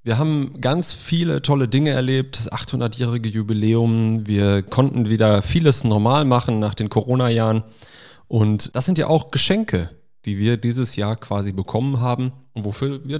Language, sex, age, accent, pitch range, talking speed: German, male, 30-49, German, 110-130 Hz, 160 wpm